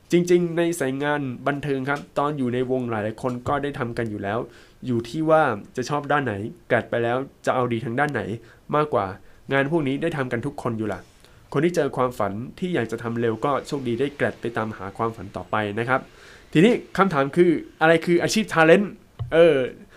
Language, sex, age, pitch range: Thai, male, 20-39, 115-155 Hz